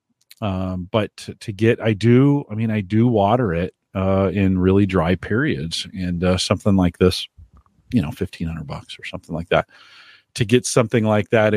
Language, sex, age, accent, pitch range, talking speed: English, male, 40-59, American, 95-125 Hz, 185 wpm